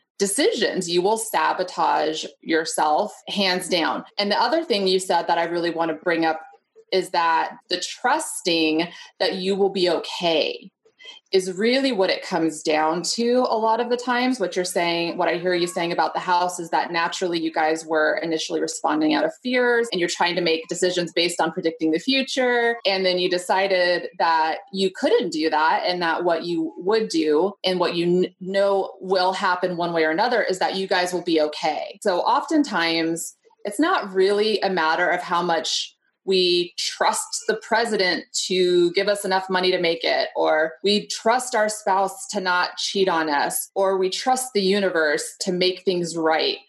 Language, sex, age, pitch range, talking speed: English, female, 30-49, 170-215 Hz, 190 wpm